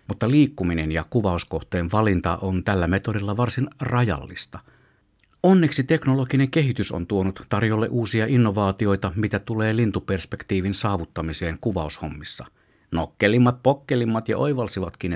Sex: male